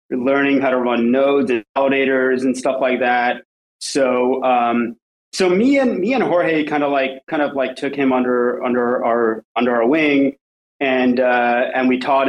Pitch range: 125-150 Hz